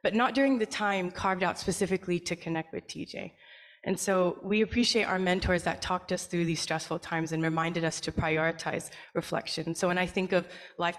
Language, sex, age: English, female, 20-39